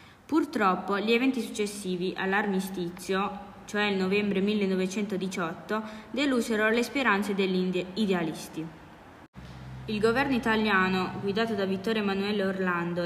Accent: native